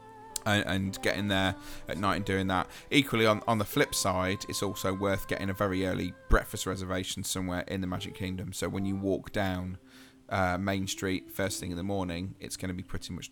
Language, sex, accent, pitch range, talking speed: English, male, British, 95-110 Hz, 215 wpm